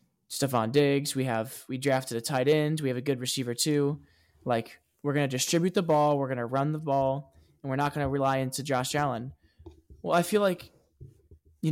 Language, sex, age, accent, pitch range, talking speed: English, male, 20-39, American, 130-155 Hz, 215 wpm